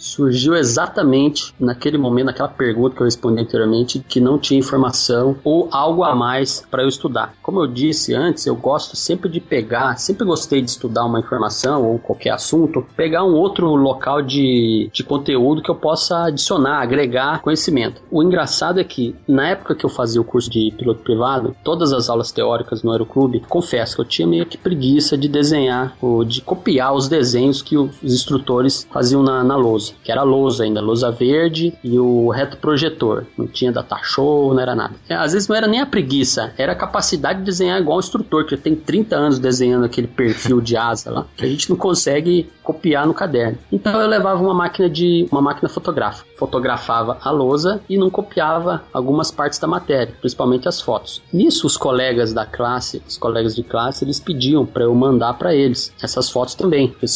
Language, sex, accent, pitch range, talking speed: English, male, Brazilian, 125-155 Hz, 195 wpm